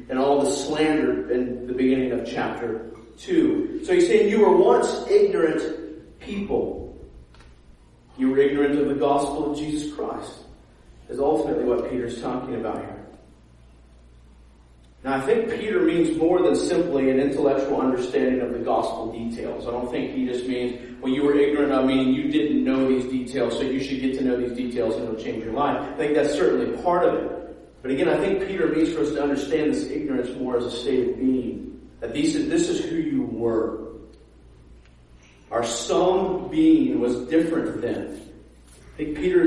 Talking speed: 185 wpm